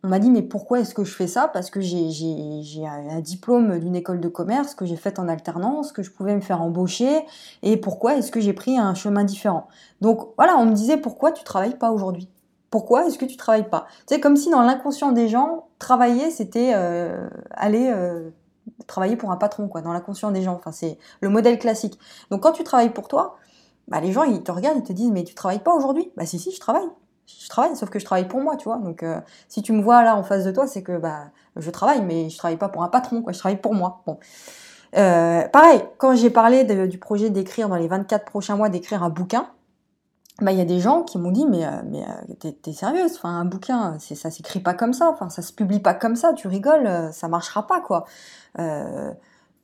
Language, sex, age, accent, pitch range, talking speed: French, female, 20-39, French, 180-245 Hz, 245 wpm